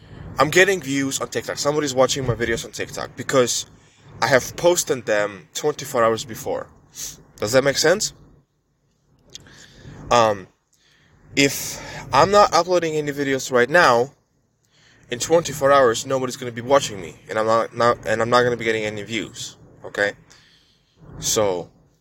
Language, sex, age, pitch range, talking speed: English, male, 20-39, 120-150 Hz, 145 wpm